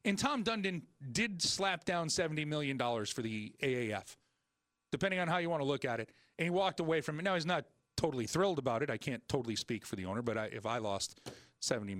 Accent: American